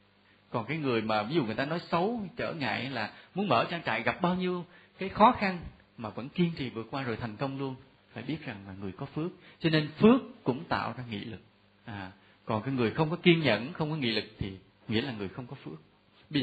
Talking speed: 250 wpm